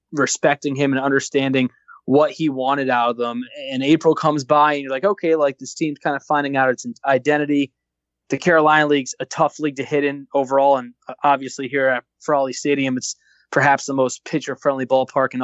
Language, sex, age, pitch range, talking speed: English, male, 20-39, 130-150 Hz, 200 wpm